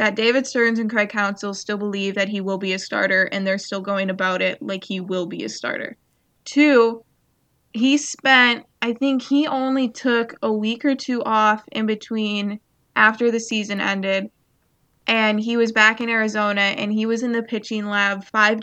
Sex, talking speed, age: female, 190 wpm, 20-39